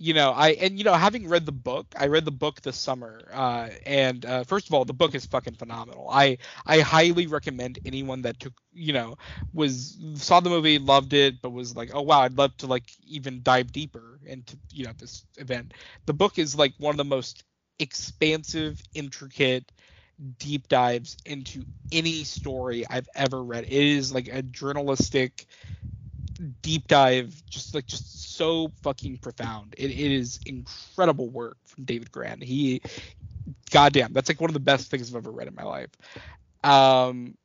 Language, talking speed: English, 185 wpm